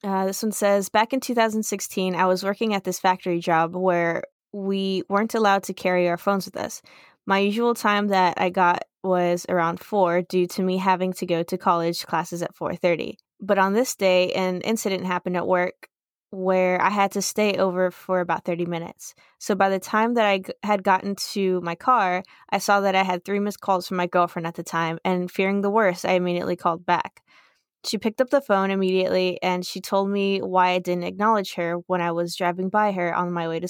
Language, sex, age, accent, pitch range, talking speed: English, female, 20-39, American, 180-205 Hz, 215 wpm